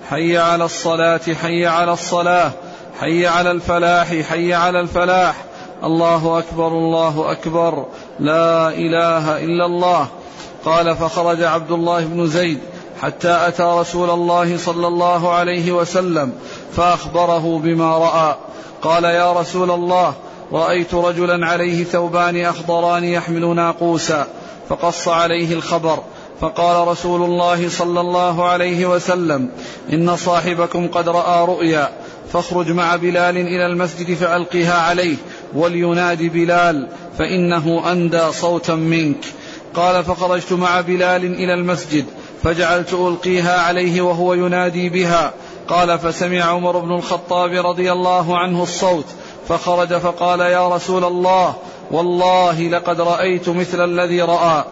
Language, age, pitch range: Arabic, 40-59, 170-175 Hz